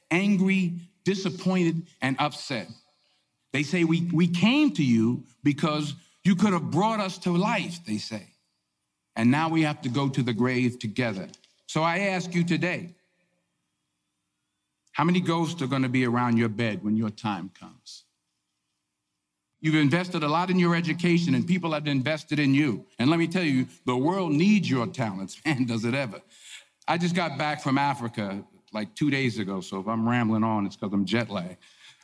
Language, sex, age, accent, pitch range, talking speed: English, male, 50-69, American, 120-175 Hz, 180 wpm